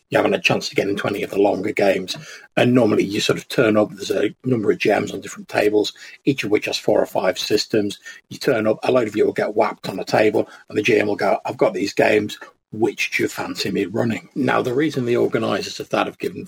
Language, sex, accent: English, male, British